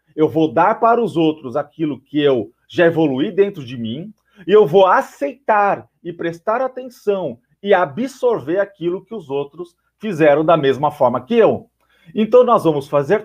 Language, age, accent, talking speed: Portuguese, 40-59, Brazilian, 170 wpm